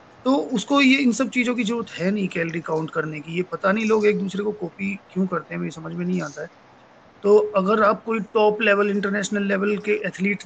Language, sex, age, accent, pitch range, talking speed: Hindi, male, 30-49, native, 160-200 Hz, 235 wpm